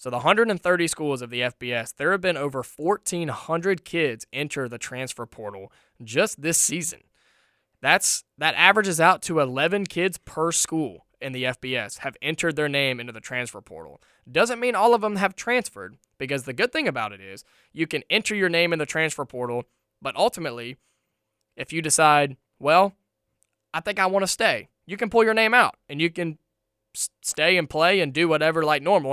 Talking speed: 190 wpm